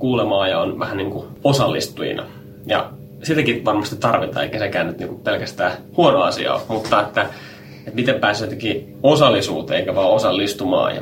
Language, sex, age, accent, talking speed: Finnish, male, 20-39, native, 160 wpm